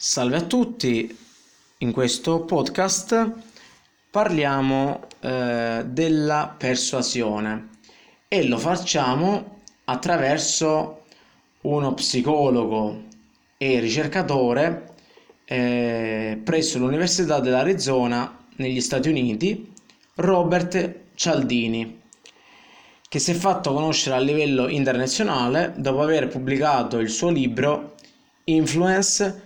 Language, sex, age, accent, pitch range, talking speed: Italian, male, 20-39, native, 125-165 Hz, 85 wpm